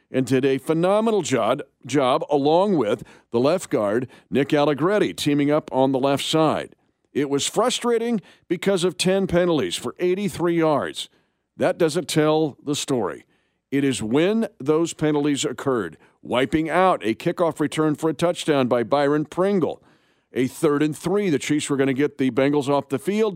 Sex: male